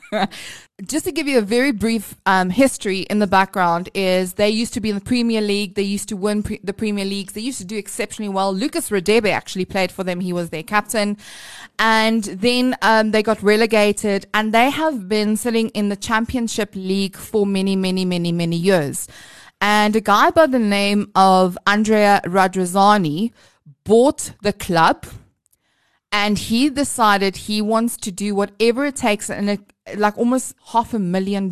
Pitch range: 185-220 Hz